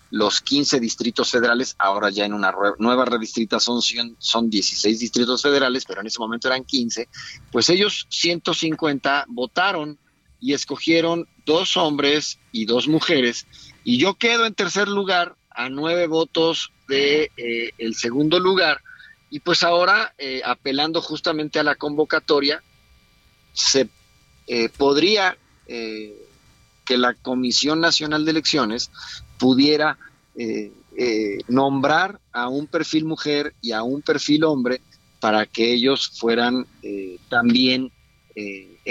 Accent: Mexican